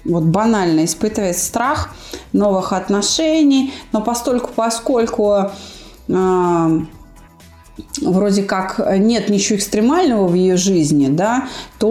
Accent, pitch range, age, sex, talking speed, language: native, 185-240 Hz, 30-49, female, 95 wpm, Russian